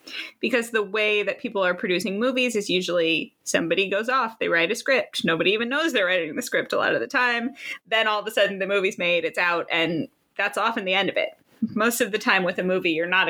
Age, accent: 20-39, American